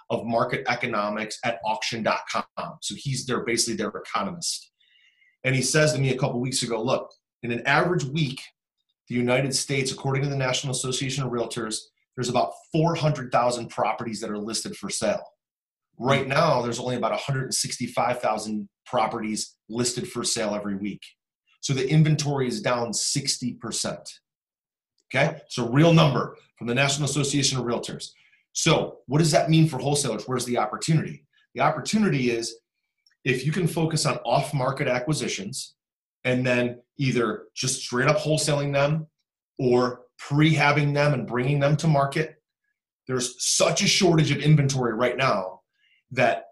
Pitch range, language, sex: 120-155 Hz, English, male